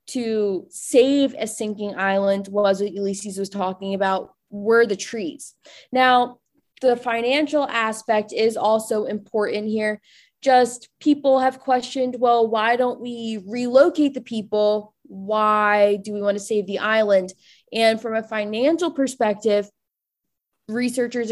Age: 20-39